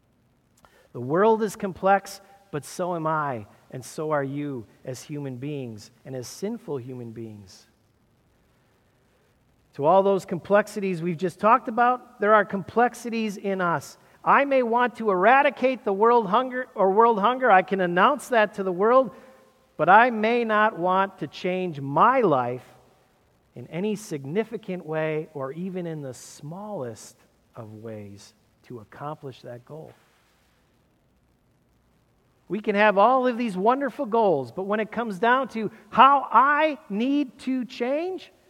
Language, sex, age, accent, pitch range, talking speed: English, male, 40-59, American, 130-215 Hz, 145 wpm